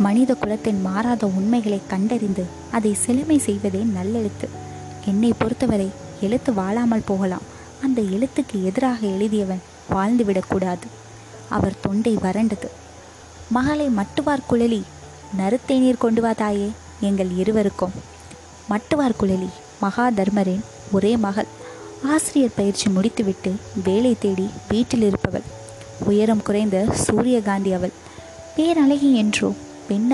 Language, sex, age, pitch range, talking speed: Tamil, female, 20-39, 195-240 Hz, 100 wpm